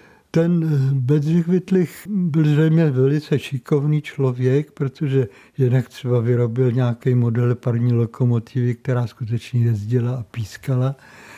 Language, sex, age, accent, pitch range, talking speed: Czech, male, 60-79, native, 125-145 Hz, 110 wpm